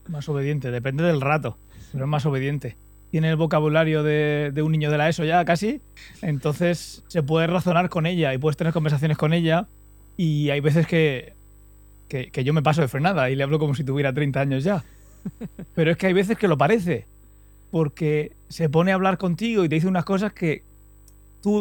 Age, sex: 30-49, male